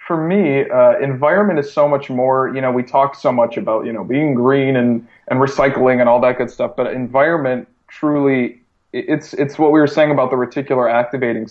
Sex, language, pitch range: male, English, 120-140 Hz